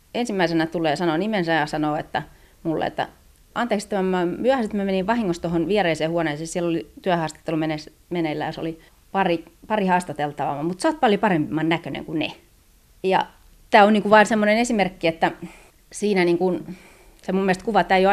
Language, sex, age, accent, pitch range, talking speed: Finnish, female, 30-49, native, 160-195 Hz, 175 wpm